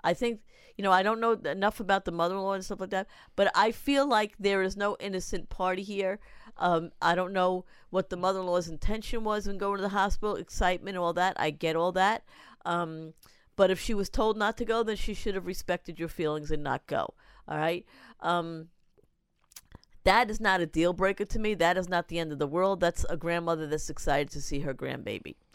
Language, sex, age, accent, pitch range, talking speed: English, female, 50-69, American, 170-215 Hz, 220 wpm